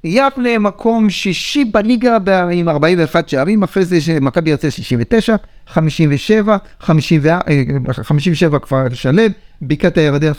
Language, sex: Hebrew, male